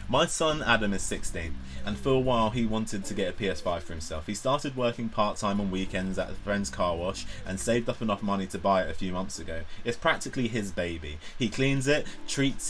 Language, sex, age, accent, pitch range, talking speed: English, male, 20-39, British, 100-120 Hz, 225 wpm